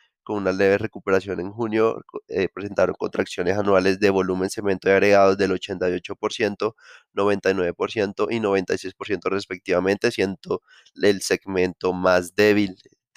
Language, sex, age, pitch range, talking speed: Spanish, male, 20-39, 95-105 Hz, 130 wpm